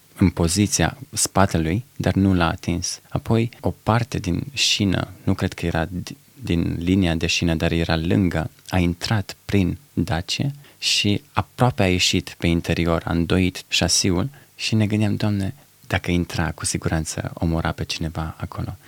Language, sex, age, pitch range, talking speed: Romanian, male, 20-39, 90-110 Hz, 155 wpm